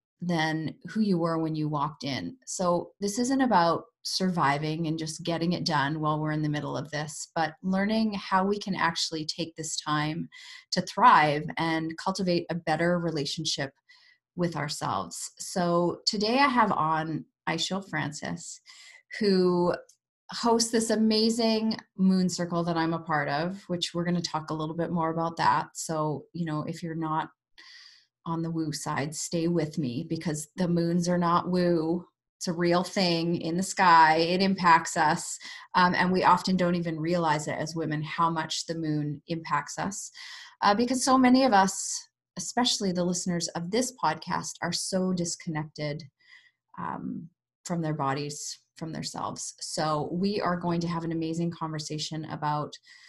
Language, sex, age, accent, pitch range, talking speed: English, female, 30-49, American, 155-190 Hz, 165 wpm